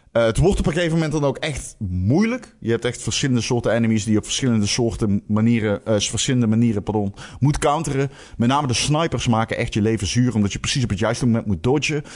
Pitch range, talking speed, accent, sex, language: 100-130 Hz, 230 wpm, Dutch, male, Dutch